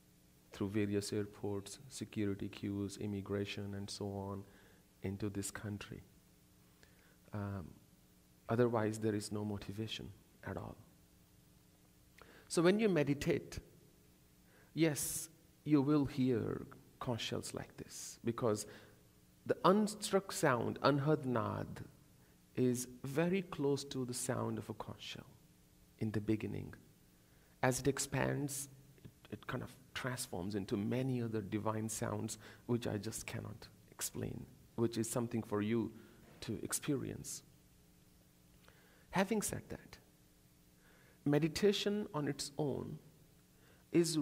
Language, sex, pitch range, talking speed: English, male, 95-130 Hz, 115 wpm